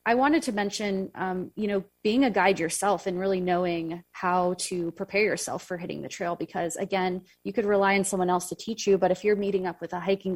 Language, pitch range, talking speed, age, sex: English, 180-210 Hz, 240 wpm, 20-39, female